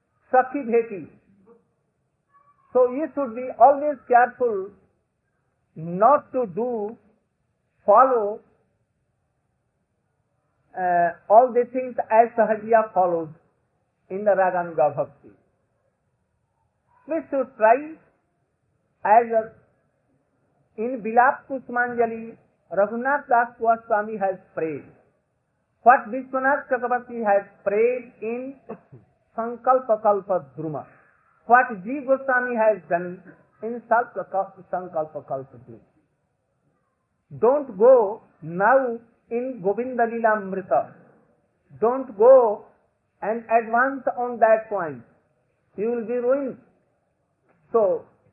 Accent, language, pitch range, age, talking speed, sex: Indian, English, 190-255 Hz, 50-69, 85 wpm, male